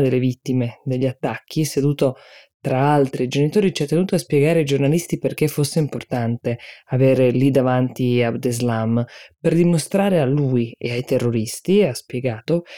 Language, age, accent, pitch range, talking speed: Italian, 20-39, native, 125-155 Hz, 155 wpm